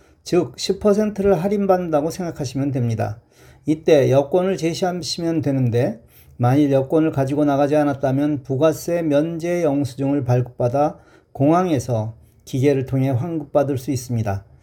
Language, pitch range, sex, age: Korean, 125-160 Hz, male, 40-59